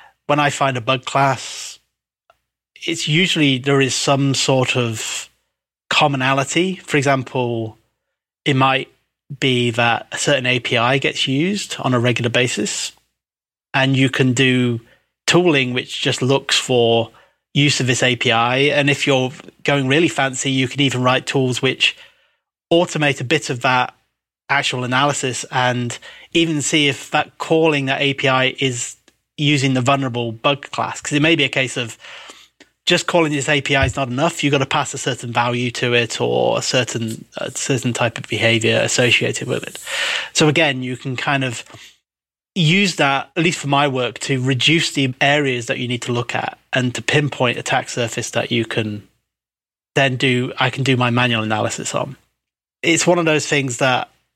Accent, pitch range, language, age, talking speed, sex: British, 125-145 Hz, English, 30-49, 170 wpm, male